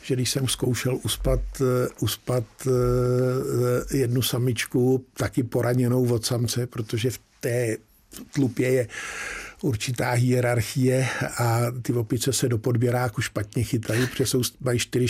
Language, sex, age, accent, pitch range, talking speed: Czech, male, 50-69, native, 115-130 Hz, 120 wpm